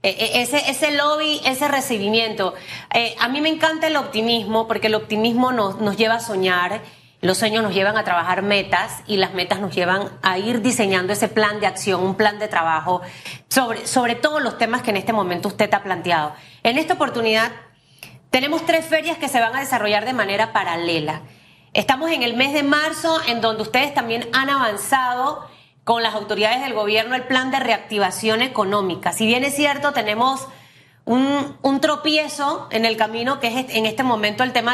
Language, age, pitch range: Spanish, 30-49, 210-275 Hz